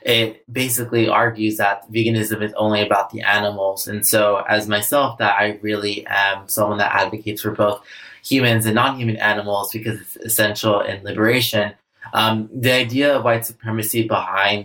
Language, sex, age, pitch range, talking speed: English, male, 20-39, 105-115 Hz, 160 wpm